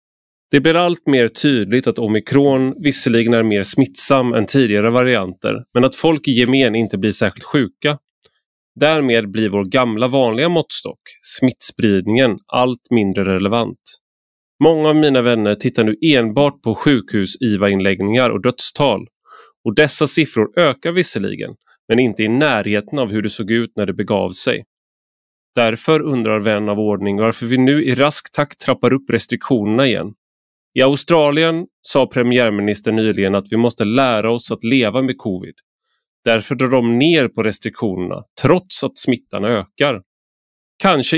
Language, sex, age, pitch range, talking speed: Swedish, male, 30-49, 110-135 Hz, 150 wpm